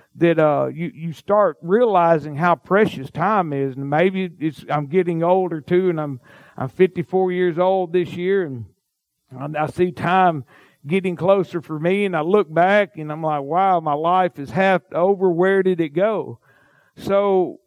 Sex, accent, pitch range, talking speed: male, American, 155-205 Hz, 175 wpm